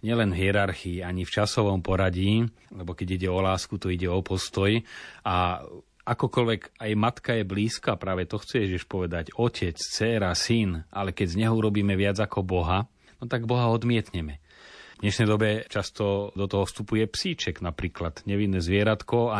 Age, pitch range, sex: 30-49, 95-110 Hz, male